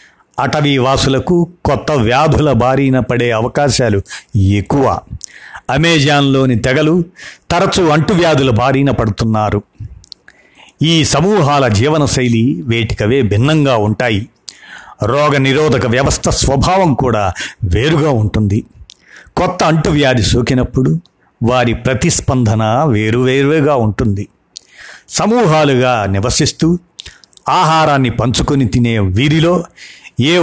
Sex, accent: male, native